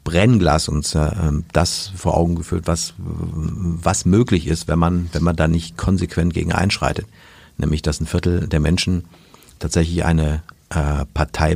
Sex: male